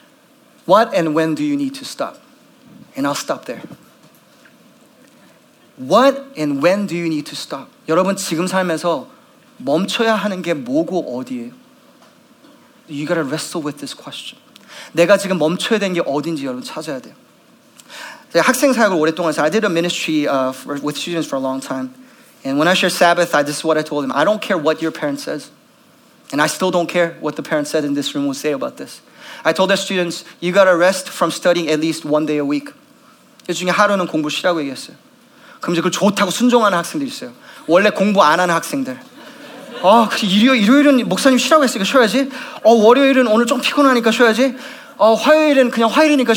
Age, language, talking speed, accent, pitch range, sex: 30-49, English, 155 wpm, Korean, 170-275 Hz, male